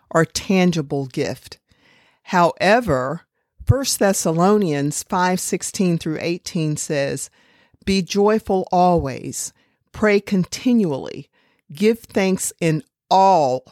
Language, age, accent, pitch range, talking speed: English, 50-69, American, 155-200 Hz, 90 wpm